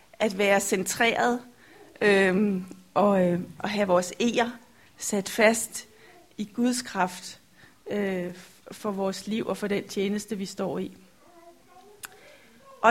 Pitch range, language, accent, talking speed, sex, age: 200-245 Hz, Danish, native, 125 wpm, female, 30-49